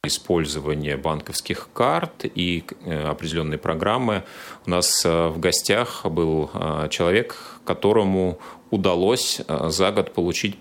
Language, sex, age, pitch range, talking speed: Russian, male, 30-49, 80-105 Hz, 95 wpm